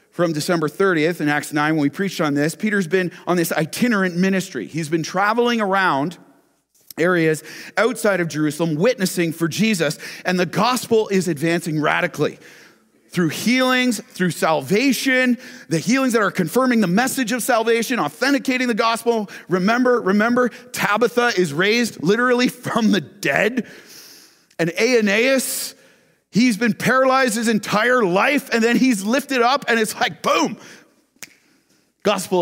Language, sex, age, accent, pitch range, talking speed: English, male, 40-59, American, 175-240 Hz, 145 wpm